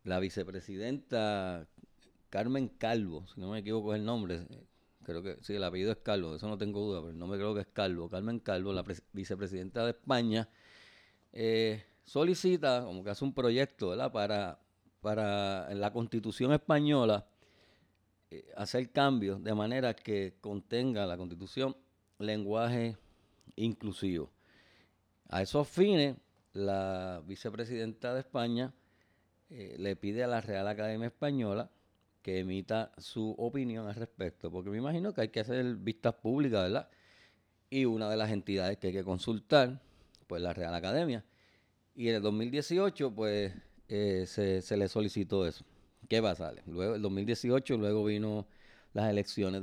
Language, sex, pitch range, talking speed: Spanish, male, 95-115 Hz, 150 wpm